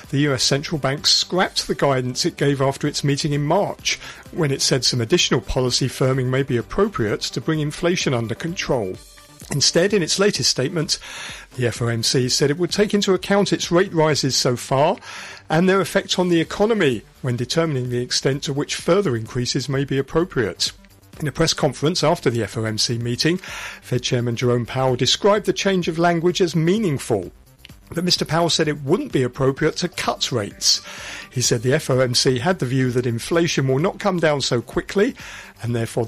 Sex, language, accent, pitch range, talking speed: male, English, British, 125-165 Hz, 185 wpm